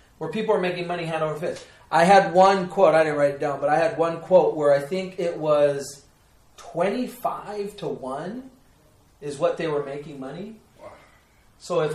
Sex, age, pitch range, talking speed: male, 30-49, 145-195 Hz, 190 wpm